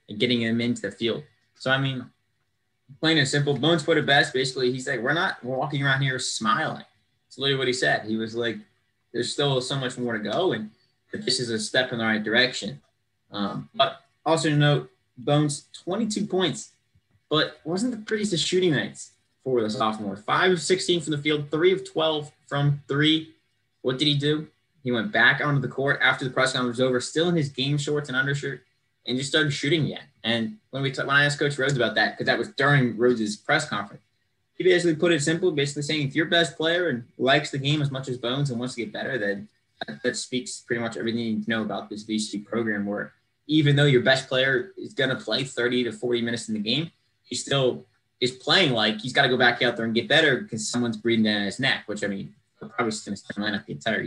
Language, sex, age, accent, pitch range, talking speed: English, male, 20-39, American, 115-145 Hz, 235 wpm